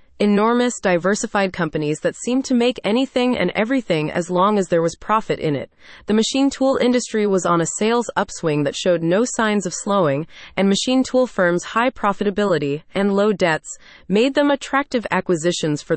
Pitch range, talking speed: 170-235 Hz, 175 wpm